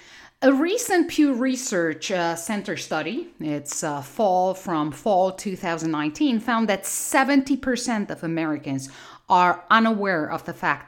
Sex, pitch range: female, 155-240 Hz